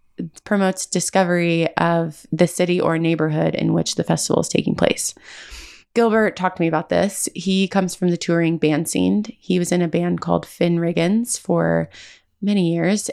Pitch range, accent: 165-190 Hz, American